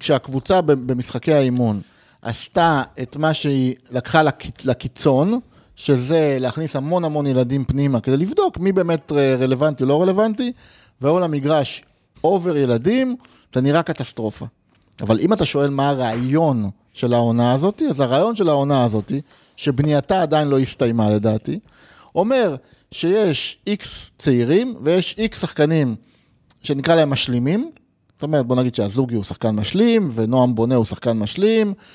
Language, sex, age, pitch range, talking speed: Hebrew, male, 30-49, 125-180 Hz, 135 wpm